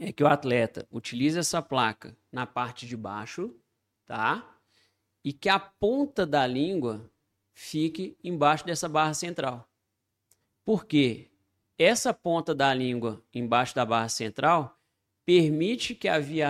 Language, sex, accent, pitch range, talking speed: Portuguese, male, Brazilian, 115-155 Hz, 130 wpm